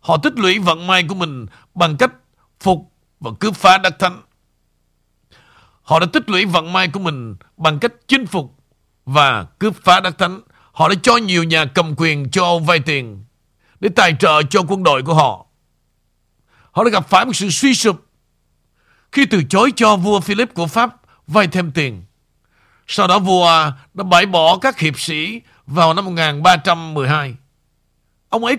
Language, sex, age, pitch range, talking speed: Vietnamese, male, 50-69, 145-195 Hz, 175 wpm